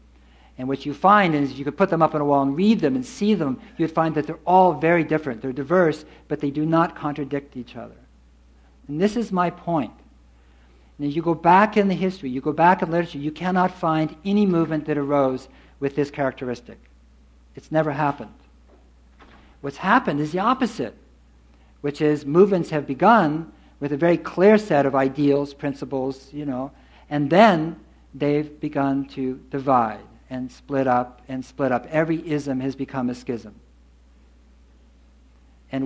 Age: 60-79